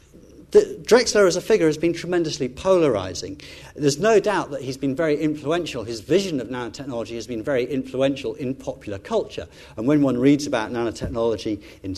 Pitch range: 110-150 Hz